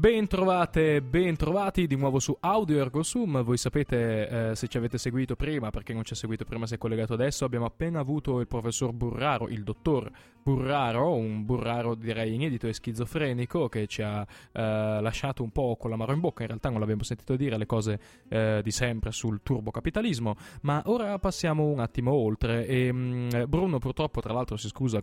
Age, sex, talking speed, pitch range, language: 20-39, male, 195 wpm, 110-140 Hz, Italian